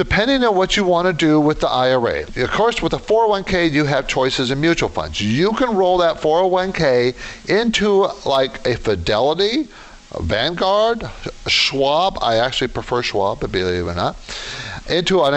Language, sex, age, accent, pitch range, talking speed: English, male, 50-69, American, 115-170 Hz, 170 wpm